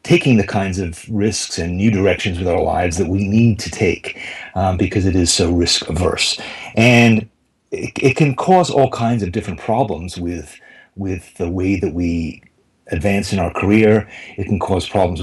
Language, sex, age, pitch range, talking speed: English, male, 40-59, 85-105 Hz, 185 wpm